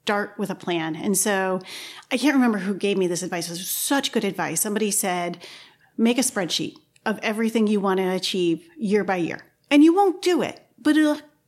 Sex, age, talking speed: female, 40-59, 210 wpm